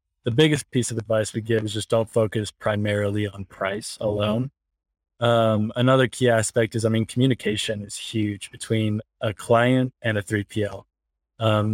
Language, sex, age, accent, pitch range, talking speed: English, male, 20-39, American, 105-120 Hz, 165 wpm